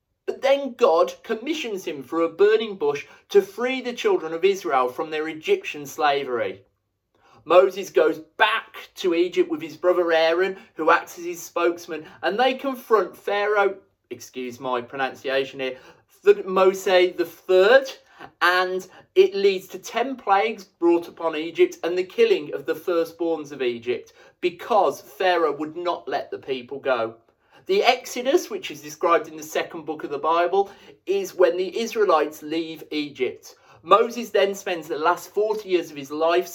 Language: English